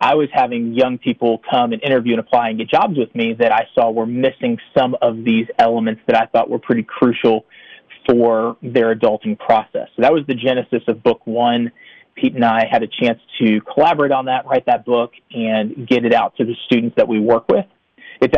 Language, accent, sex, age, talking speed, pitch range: English, American, male, 30-49, 220 wpm, 115-145 Hz